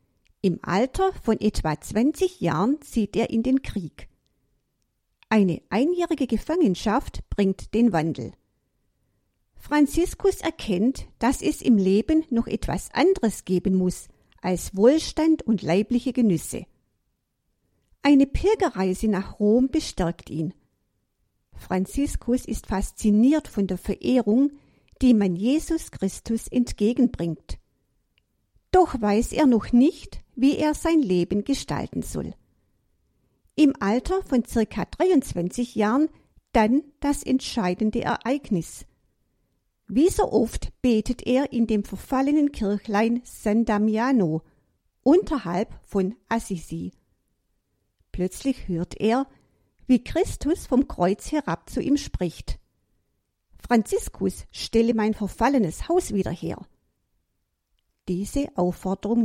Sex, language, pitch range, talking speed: female, German, 180-270 Hz, 105 wpm